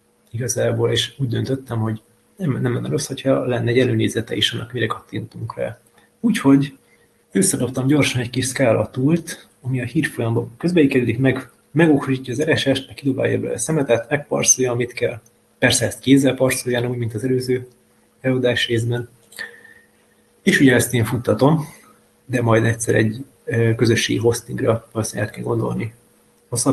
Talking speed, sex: 145 wpm, male